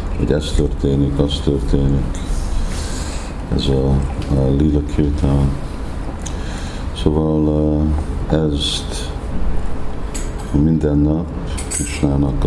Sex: male